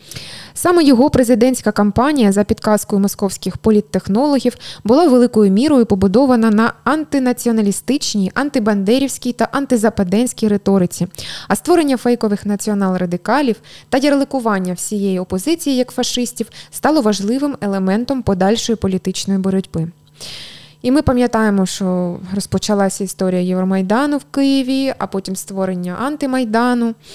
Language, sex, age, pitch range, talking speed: Ukrainian, female, 20-39, 195-250 Hz, 105 wpm